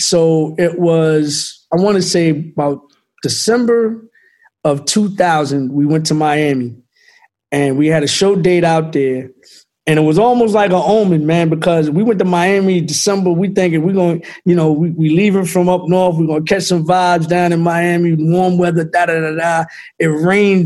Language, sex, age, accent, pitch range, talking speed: English, male, 20-39, American, 150-180 Hz, 190 wpm